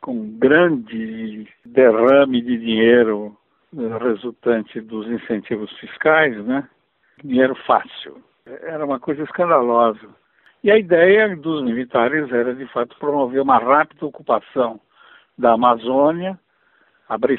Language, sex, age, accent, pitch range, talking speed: Portuguese, male, 60-79, Brazilian, 120-180 Hz, 105 wpm